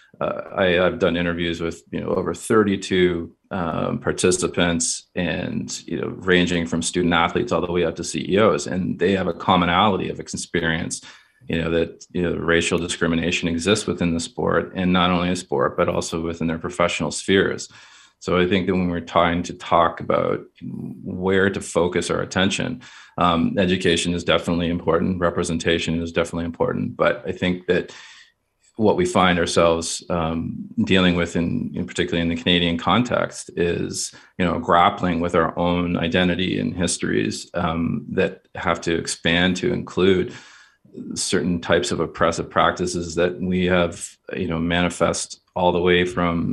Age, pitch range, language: 40-59, 85-90 Hz, English